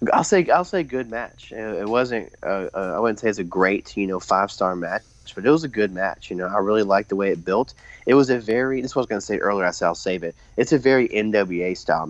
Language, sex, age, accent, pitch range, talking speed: English, male, 30-49, American, 90-110 Hz, 285 wpm